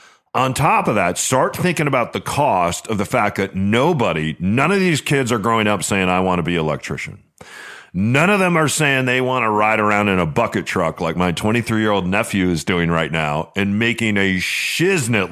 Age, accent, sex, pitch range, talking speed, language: 40-59, American, male, 95-125 Hz, 210 wpm, English